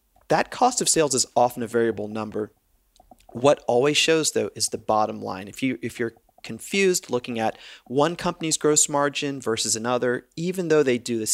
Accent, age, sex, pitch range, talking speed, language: American, 40-59, male, 115-150 Hz, 185 wpm, English